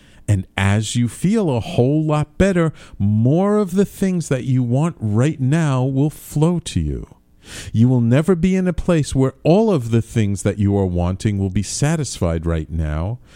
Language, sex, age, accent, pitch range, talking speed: English, male, 50-69, American, 95-150 Hz, 190 wpm